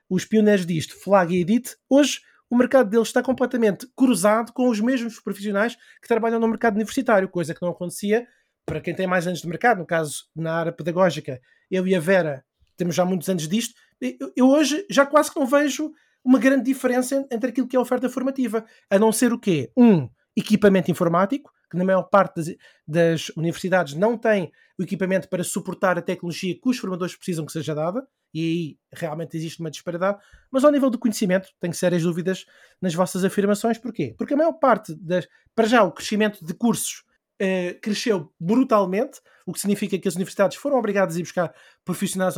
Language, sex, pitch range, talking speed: Portuguese, male, 180-240 Hz, 195 wpm